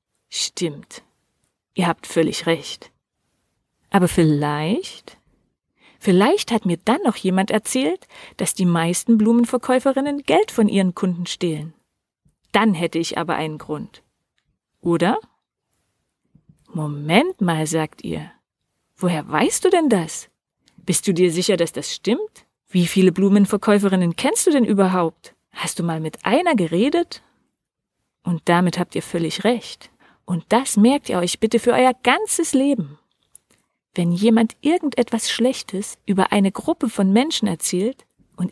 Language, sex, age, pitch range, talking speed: German, female, 40-59, 175-255 Hz, 135 wpm